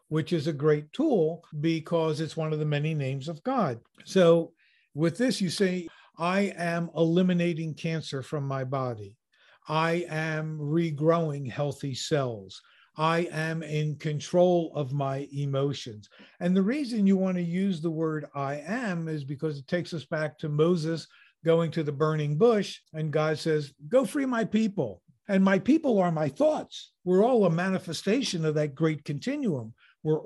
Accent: American